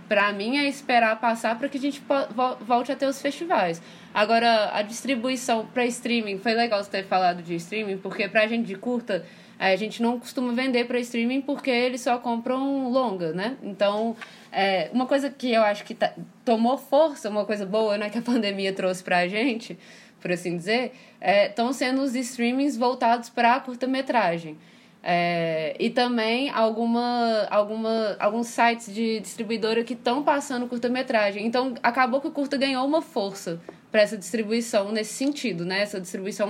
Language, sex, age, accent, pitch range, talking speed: Portuguese, female, 20-39, Brazilian, 195-245 Hz, 175 wpm